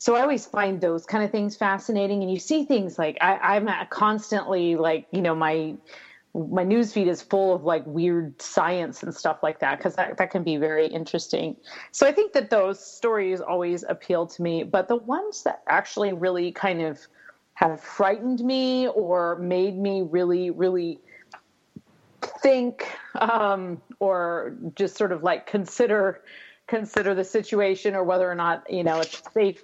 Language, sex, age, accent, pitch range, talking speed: English, female, 30-49, American, 175-210 Hz, 170 wpm